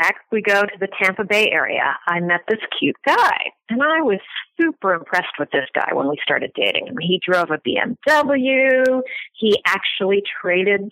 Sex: female